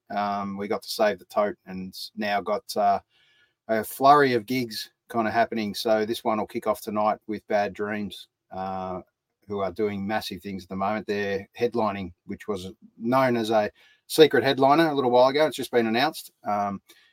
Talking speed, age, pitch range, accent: 190 wpm, 30-49, 100-120 Hz, Australian